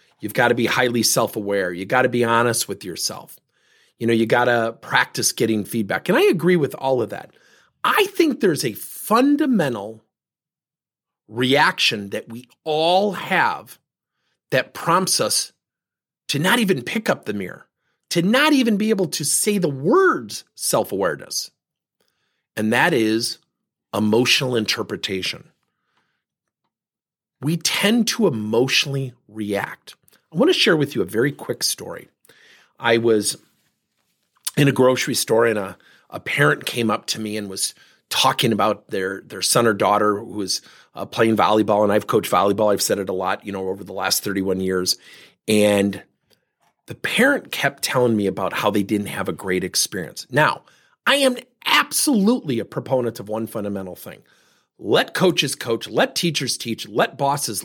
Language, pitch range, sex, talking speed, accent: English, 105-160 Hz, male, 160 wpm, American